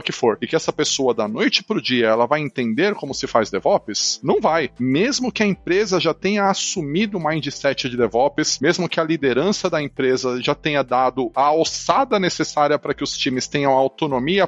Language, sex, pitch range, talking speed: Portuguese, male, 135-180 Hz, 200 wpm